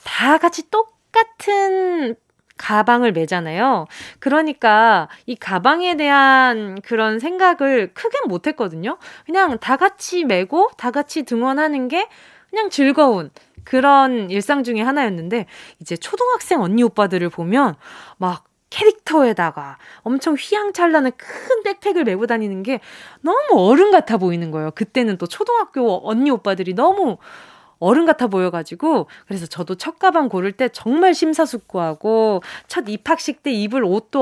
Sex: female